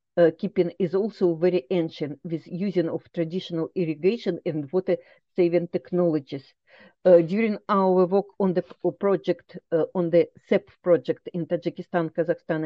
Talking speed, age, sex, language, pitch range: 140 wpm, 50-69, female, English, 170-200 Hz